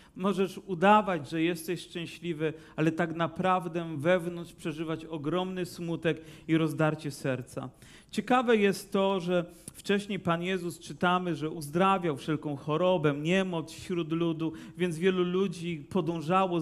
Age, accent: 40-59, native